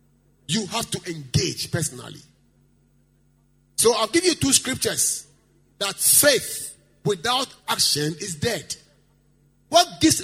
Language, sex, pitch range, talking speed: English, male, 140-235 Hz, 110 wpm